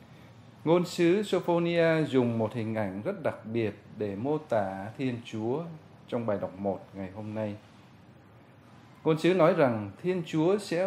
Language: Vietnamese